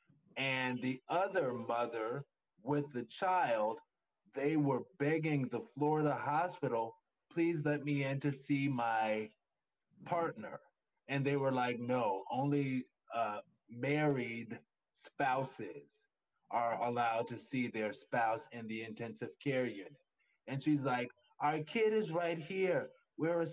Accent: American